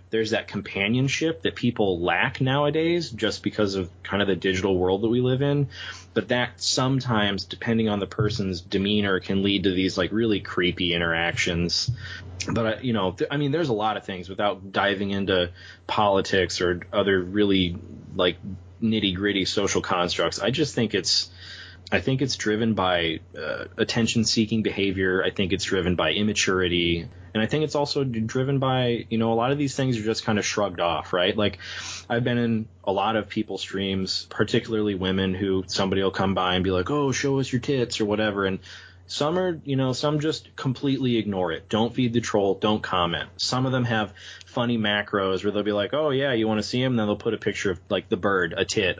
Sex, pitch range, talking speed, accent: male, 95-115 Hz, 205 wpm, American